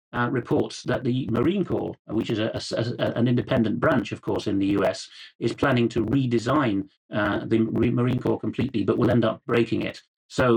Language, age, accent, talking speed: English, 40-59, British, 180 wpm